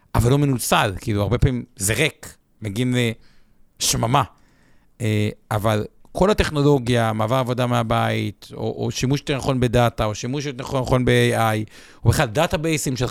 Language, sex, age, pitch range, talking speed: Hebrew, male, 50-69, 115-145 Hz, 145 wpm